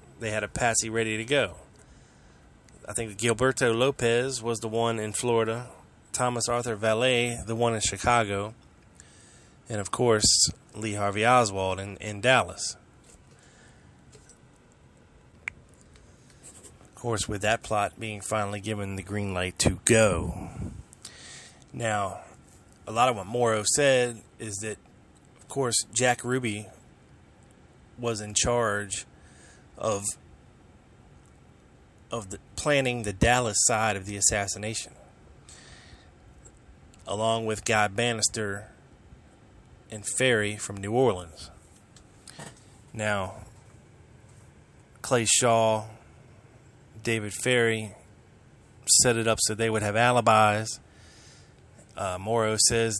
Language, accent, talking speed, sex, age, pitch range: English, American, 110 wpm, male, 20-39, 105-120 Hz